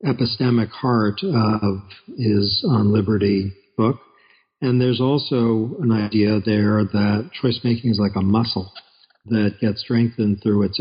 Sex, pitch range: male, 105-125 Hz